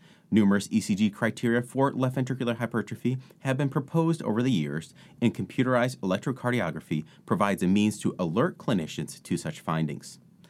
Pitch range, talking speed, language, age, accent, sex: 90-130 Hz, 145 wpm, English, 30-49, American, male